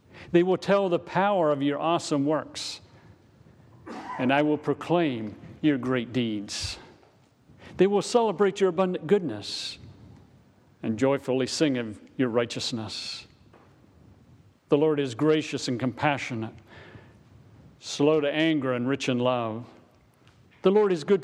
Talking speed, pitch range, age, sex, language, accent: 125 wpm, 120-155 Hz, 50-69, male, English, American